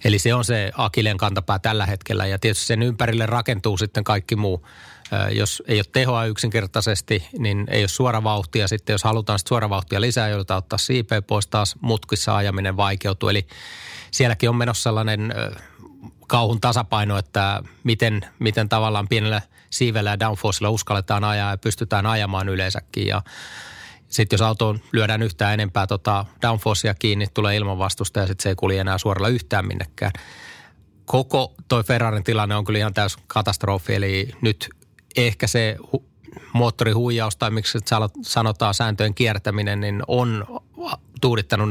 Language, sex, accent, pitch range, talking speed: Finnish, male, native, 100-115 Hz, 150 wpm